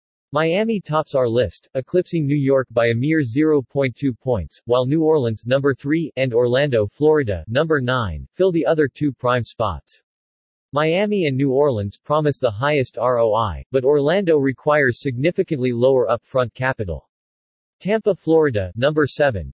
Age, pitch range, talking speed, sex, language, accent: 40-59, 115-155 Hz, 145 wpm, male, English, American